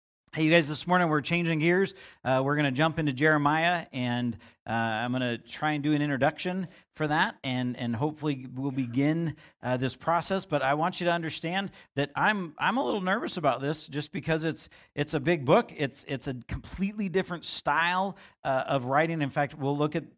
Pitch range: 135-165 Hz